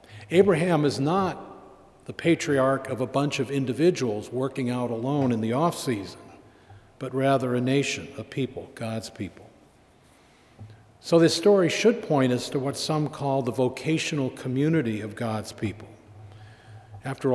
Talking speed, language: 140 wpm, English